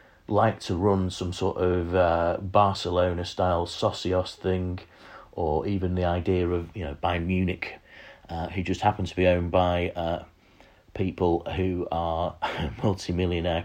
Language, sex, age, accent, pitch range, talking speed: English, male, 40-59, British, 85-105 Hz, 140 wpm